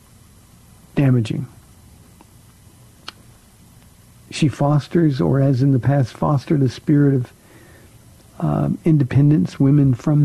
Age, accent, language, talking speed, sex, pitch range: 60-79, American, English, 95 wpm, male, 120-145 Hz